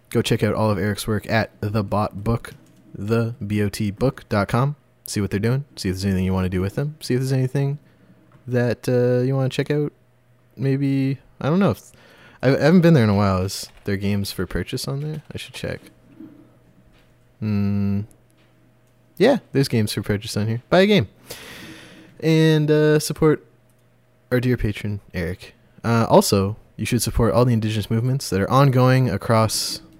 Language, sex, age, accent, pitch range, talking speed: English, male, 20-39, American, 100-125 Hz, 180 wpm